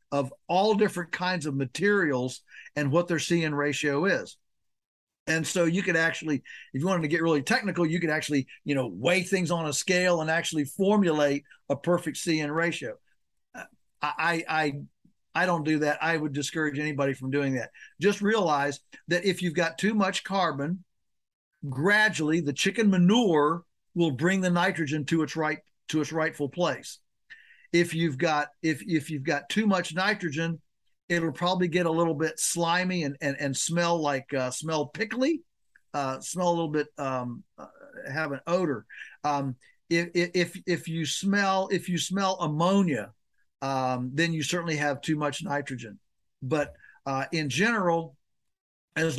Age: 50-69